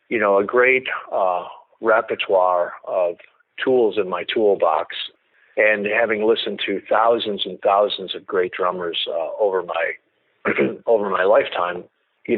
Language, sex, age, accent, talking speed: English, male, 40-59, American, 135 wpm